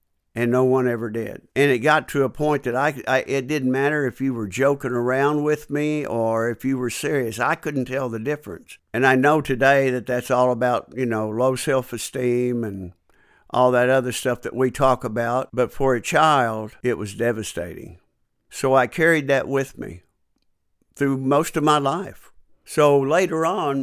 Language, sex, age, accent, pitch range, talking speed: English, male, 60-79, American, 120-140 Hz, 195 wpm